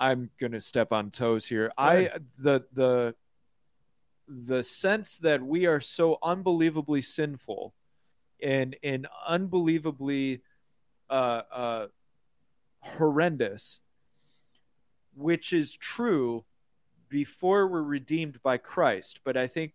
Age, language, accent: 30-49, English, American